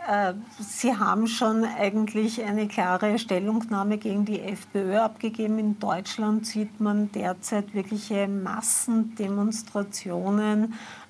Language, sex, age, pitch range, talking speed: German, female, 50-69, 205-225 Hz, 95 wpm